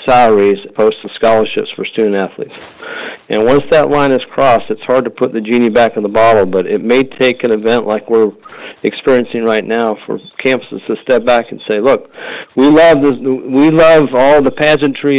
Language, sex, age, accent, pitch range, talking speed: English, male, 50-69, American, 110-135 Hz, 200 wpm